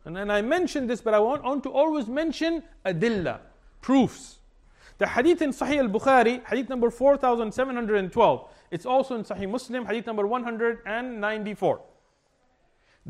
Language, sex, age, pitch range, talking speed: English, male, 40-59, 200-290 Hz, 145 wpm